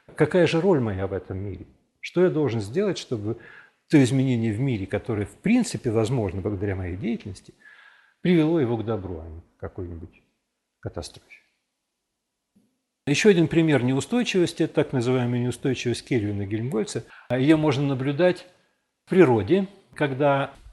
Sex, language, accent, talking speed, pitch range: male, Russian, native, 135 wpm, 120-175 Hz